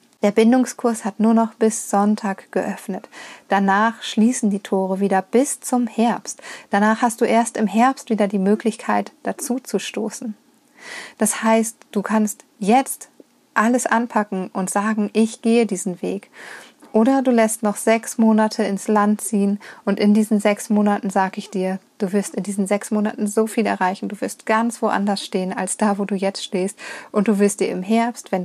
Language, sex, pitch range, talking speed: German, female, 200-230 Hz, 180 wpm